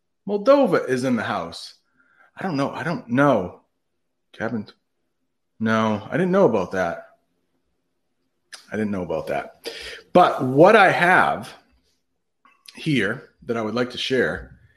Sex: male